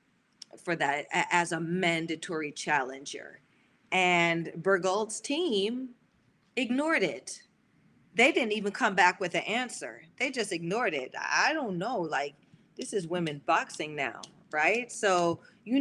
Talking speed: 135 wpm